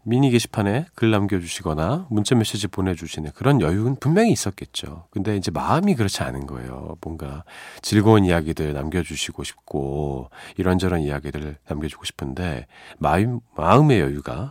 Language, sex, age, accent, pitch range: Korean, male, 40-59, native, 80-115 Hz